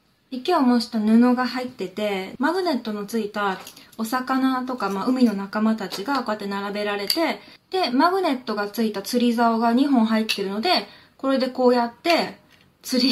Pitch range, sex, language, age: 220-275 Hz, female, Japanese, 20-39